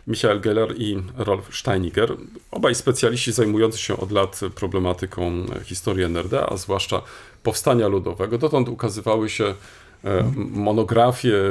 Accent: native